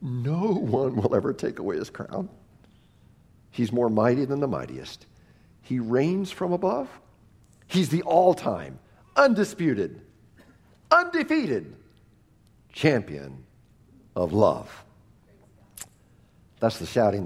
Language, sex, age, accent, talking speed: English, male, 60-79, American, 105 wpm